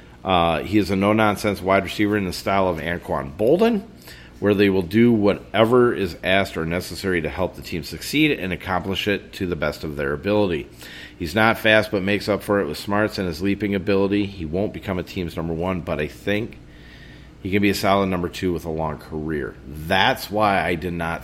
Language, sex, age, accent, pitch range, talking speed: English, male, 40-59, American, 70-95 Hz, 215 wpm